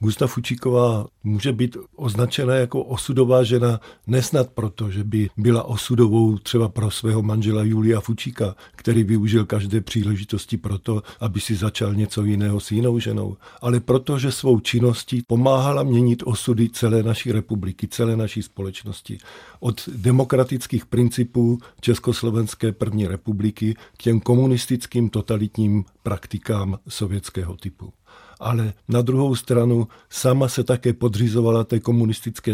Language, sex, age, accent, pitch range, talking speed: Czech, male, 50-69, native, 105-120 Hz, 130 wpm